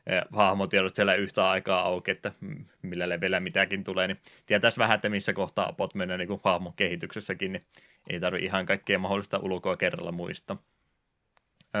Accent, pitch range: native, 90-105 Hz